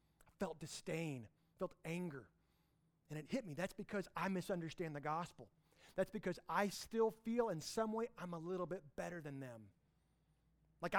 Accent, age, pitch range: American, 30-49, 155-205 Hz